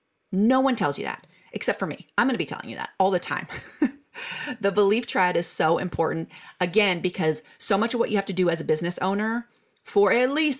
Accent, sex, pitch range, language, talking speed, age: American, female, 170-240 Hz, English, 230 wpm, 30-49